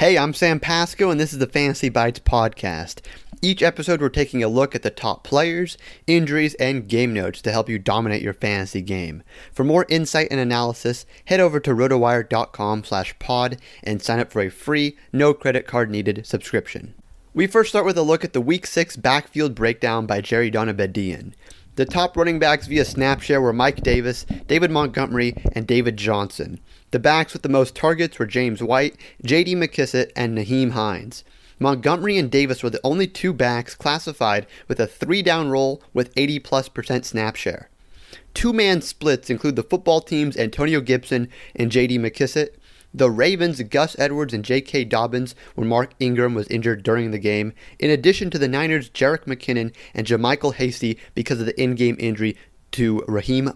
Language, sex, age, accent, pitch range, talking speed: English, male, 30-49, American, 115-150 Hz, 175 wpm